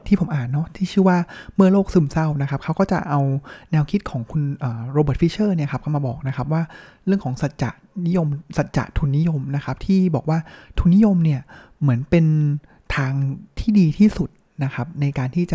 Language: Thai